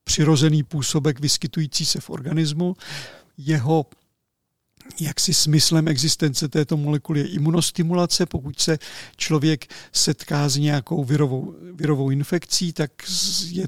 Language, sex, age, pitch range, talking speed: Czech, male, 50-69, 145-160 Hz, 110 wpm